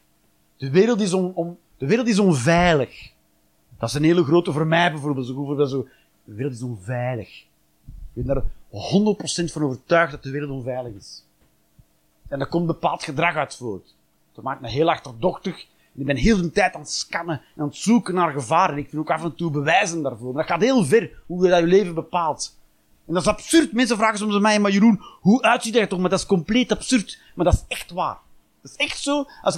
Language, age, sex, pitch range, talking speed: Dutch, 30-49, male, 145-240 Hz, 205 wpm